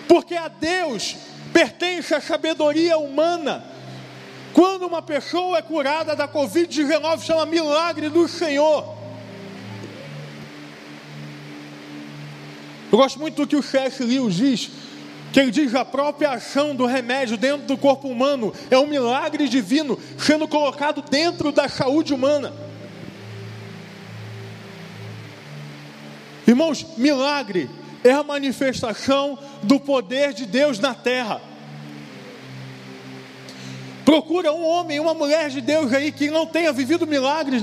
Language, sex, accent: Portuguese, male, Brazilian